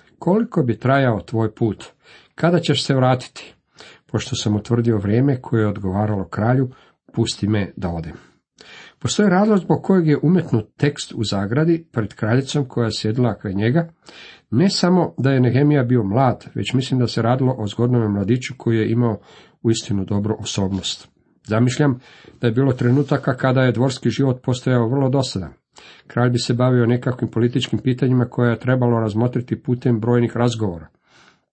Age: 50-69